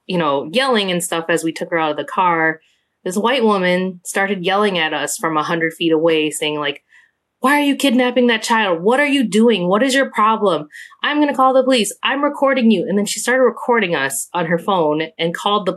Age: 20-39